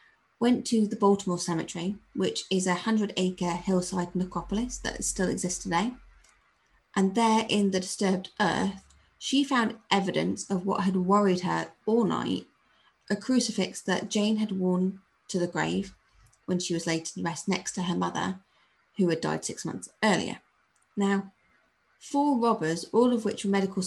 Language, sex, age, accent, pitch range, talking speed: English, female, 30-49, British, 180-220 Hz, 160 wpm